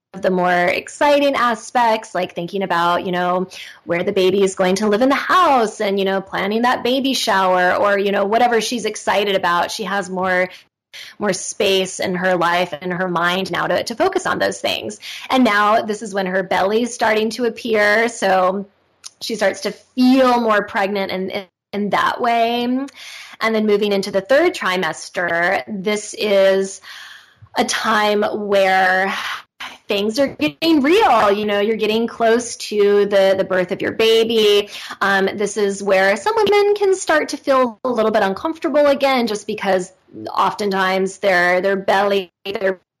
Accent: American